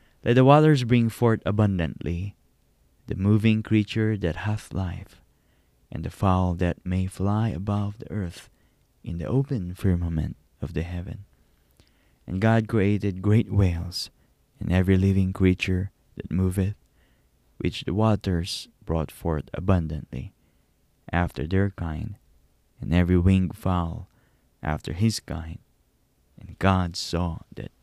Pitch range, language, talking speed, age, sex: 80-105 Hz, English, 125 wpm, 20-39, male